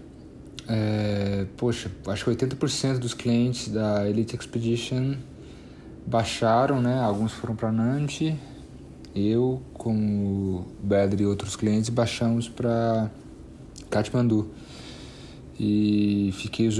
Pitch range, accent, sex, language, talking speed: 100-120 Hz, Brazilian, male, Portuguese, 105 wpm